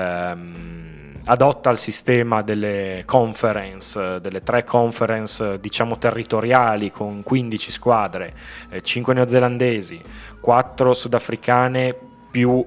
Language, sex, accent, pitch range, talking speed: Italian, male, native, 105-130 Hz, 85 wpm